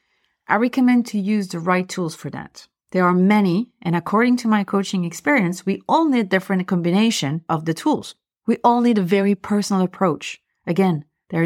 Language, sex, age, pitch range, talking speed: French, female, 40-59, 160-215 Hz, 185 wpm